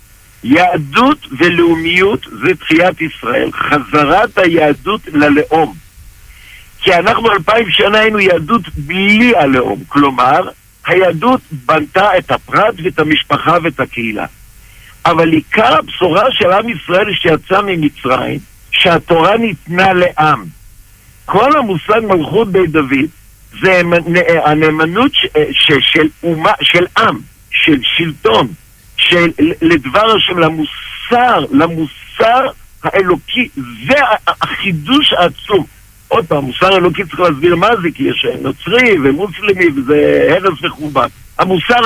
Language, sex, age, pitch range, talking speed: Hebrew, male, 60-79, 150-215 Hz, 110 wpm